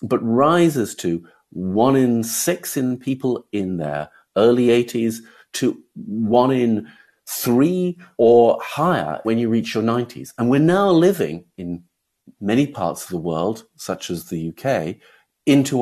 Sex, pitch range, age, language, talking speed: male, 95-140 Hz, 50-69, English, 145 wpm